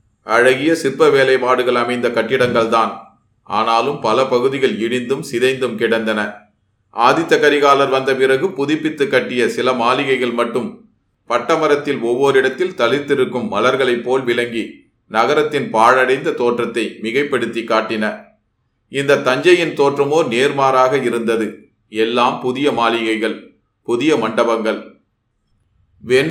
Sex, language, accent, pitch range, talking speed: male, Tamil, native, 115-140 Hz, 100 wpm